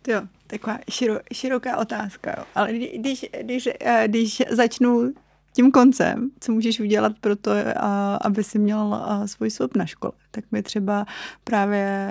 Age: 30-49